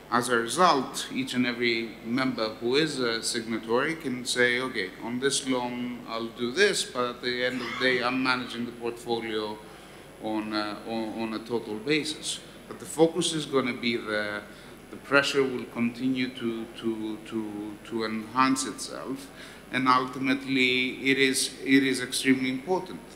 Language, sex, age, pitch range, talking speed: English, male, 50-69, 115-145 Hz, 165 wpm